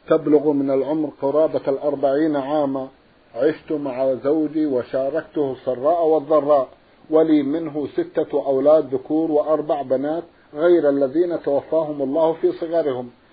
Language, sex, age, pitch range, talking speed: Arabic, male, 50-69, 145-175 Hz, 115 wpm